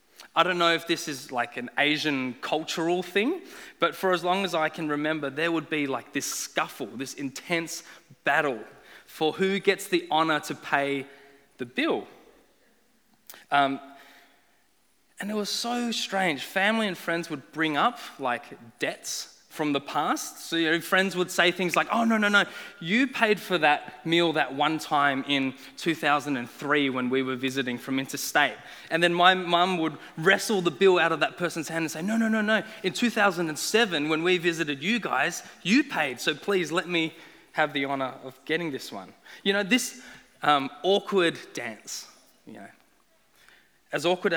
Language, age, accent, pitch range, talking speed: English, 20-39, Australian, 145-190 Hz, 175 wpm